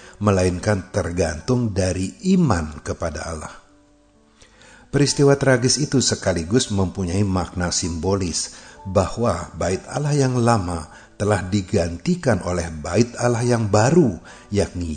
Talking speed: 105 wpm